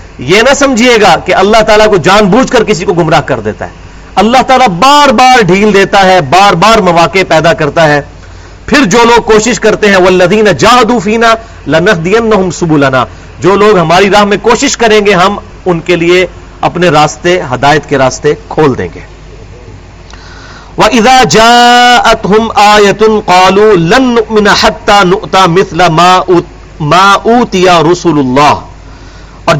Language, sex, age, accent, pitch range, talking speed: English, male, 40-59, Indian, 150-220 Hz, 105 wpm